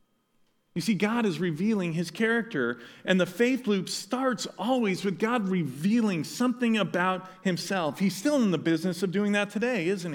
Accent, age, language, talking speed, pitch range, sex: American, 40-59, English, 170 wpm, 190-245 Hz, male